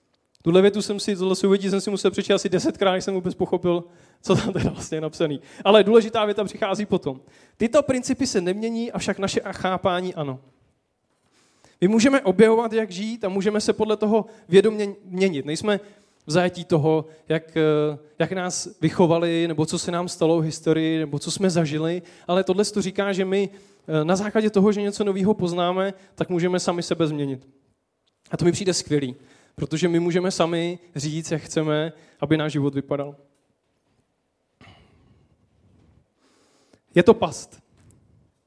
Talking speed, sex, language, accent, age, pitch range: 160 wpm, male, Czech, native, 20-39, 165-200 Hz